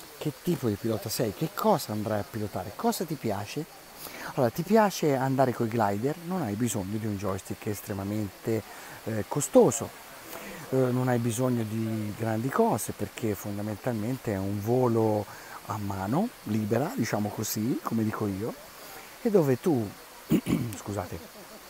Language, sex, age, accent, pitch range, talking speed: Italian, male, 40-59, native, 105-130 Hz, 145 wpm